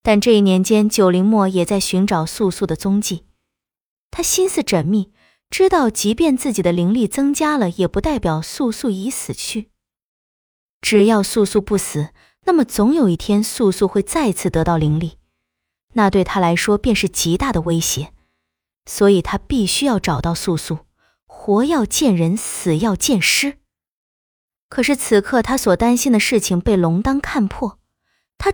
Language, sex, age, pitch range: Chinese, female, 20-39, 180-270 Hz